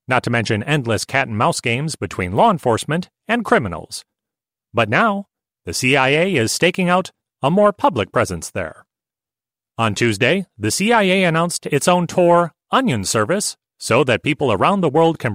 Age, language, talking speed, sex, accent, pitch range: 30-49, English, 155 wpm, male, American, 125-180 Hz